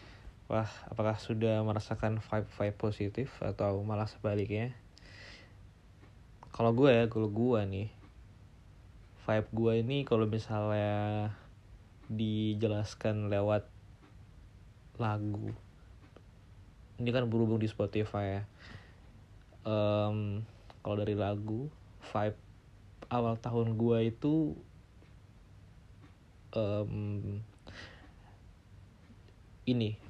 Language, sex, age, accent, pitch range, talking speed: Indonesian, male, 20-39, native, 100-110 Hz, 80 wpm